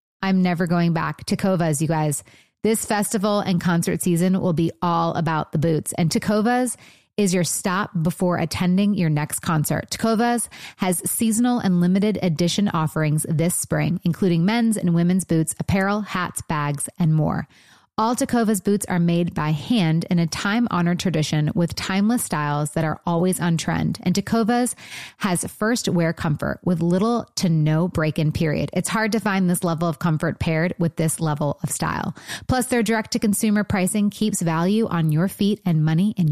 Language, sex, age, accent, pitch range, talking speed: English, female, 30-49, American, 165-210 Hz, 180 wpm